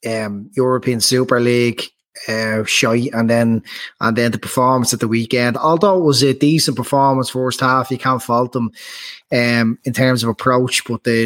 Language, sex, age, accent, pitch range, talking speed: English, male, 20-39, Irish, 120-135 Hz, 180 wpm